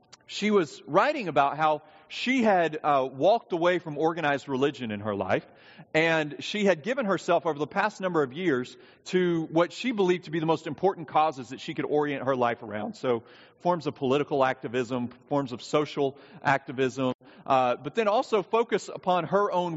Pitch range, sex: 145-200 Hz, male